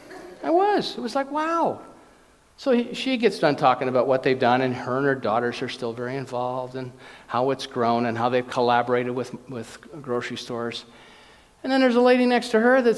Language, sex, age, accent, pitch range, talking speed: English, male, 50-69, American, 135-215 Hz, 210 wpm